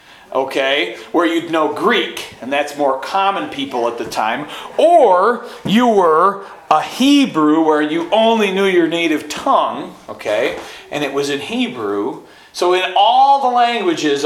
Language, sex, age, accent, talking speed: English, male, 40-59, American, 150 wpm